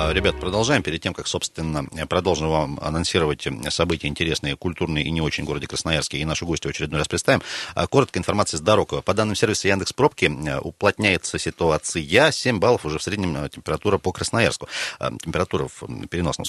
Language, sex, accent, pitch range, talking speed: Russian, male, native, 80-115 Hz, 160 wpm